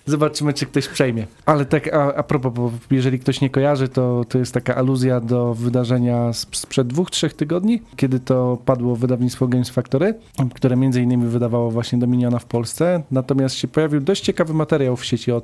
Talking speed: 185 wpm